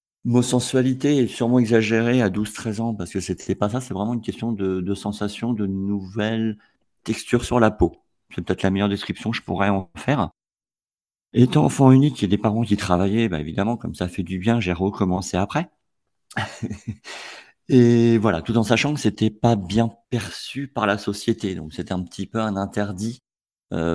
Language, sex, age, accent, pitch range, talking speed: French, male, 50-69, French, 90-115 Hz, 190 wpm